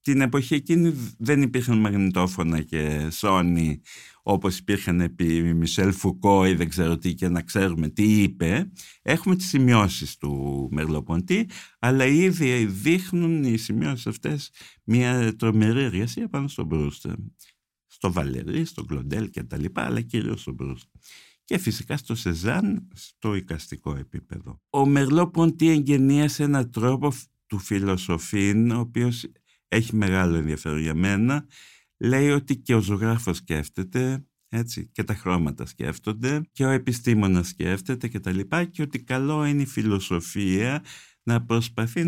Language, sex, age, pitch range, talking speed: Greek, male, 60-79, 90-140 Hz, 135 wpm